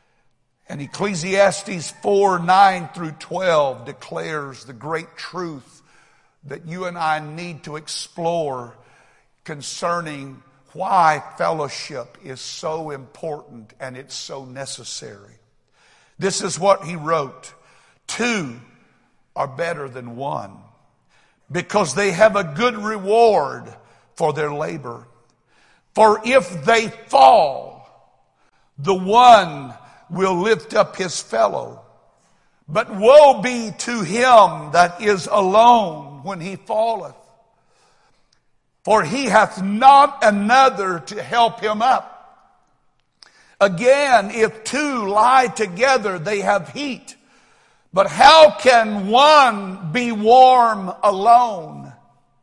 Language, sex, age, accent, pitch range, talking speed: English, male, 60-79, American, 160-235 Hz, 105 wpm